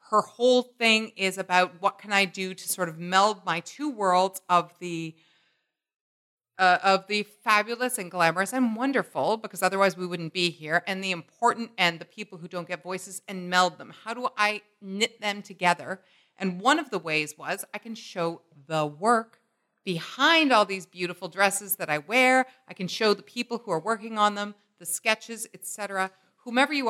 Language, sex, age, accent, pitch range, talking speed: English, female, 40-59, American, 175-225 Hz, 185 wpm